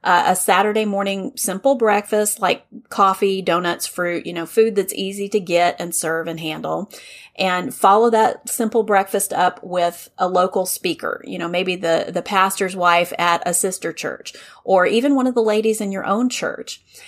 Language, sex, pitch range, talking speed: English, female, 180-230 Hz, 185 wpm